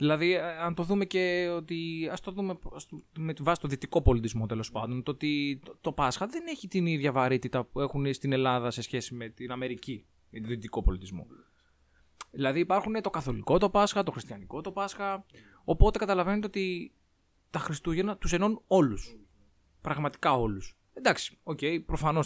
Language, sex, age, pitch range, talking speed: Greek, male, 20-39, 120-180 Hz, 165 wpm